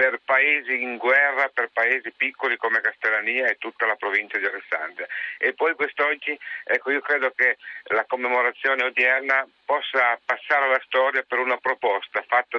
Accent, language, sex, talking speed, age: native, Italian, male, 155 wpm, 50-69